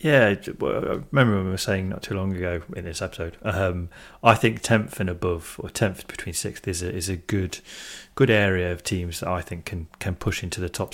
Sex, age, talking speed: male, 30-49, 230 wpm